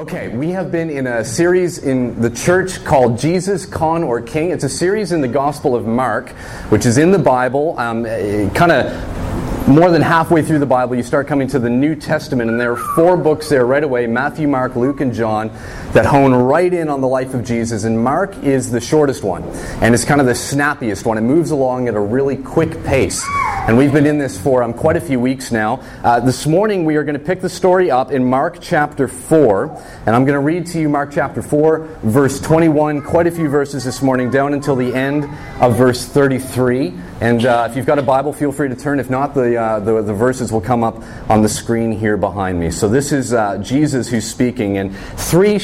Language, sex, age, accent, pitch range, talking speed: English, male, 30-49, American, 115-150 Hz, 230 wpm